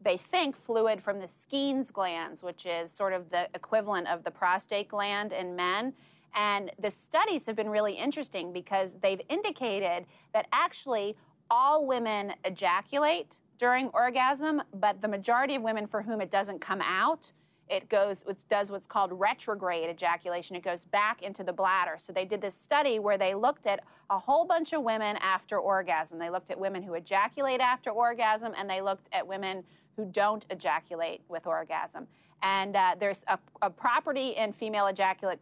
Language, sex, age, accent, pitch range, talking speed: English, female, 30-49, American, 180-220 Hz, 175 wpm